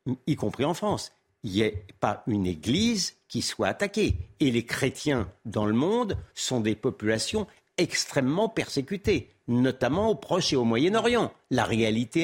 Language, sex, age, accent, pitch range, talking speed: French, male, 60-79, French, 110-160 Hz, 155 wpm